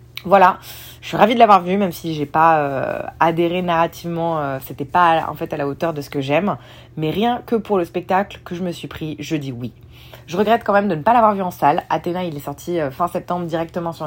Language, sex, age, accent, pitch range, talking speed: French, female, 30-49, French, 150-185 Hz, 255 wpm